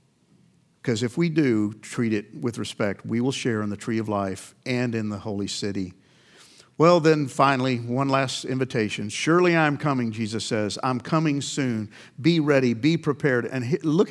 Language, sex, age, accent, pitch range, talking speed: English, male, 50-69, American, 120-150 Hz, 175 wpm